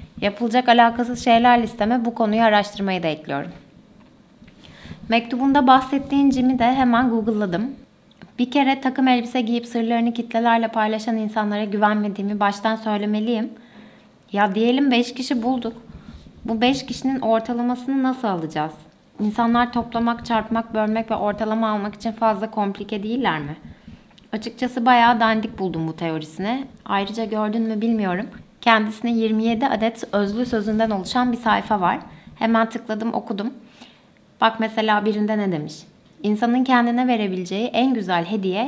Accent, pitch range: native, 210-240 Hz